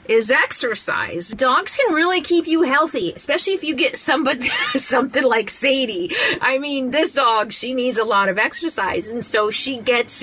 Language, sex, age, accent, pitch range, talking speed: English, female, 30-49, American, 190-280 Hz, 175 wpm